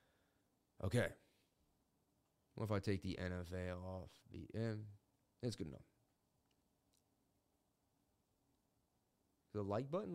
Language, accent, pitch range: English, American, 110-145 Hz